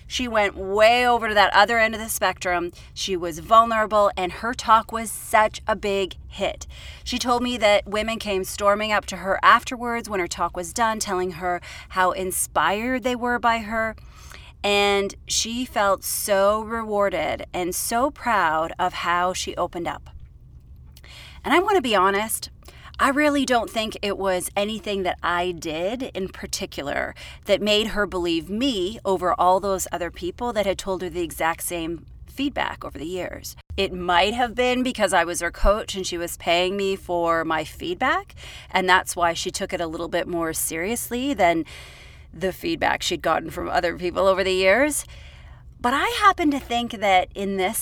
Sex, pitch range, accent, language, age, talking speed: female, 180-230 Hz, American, English, 30-49, 180 wpm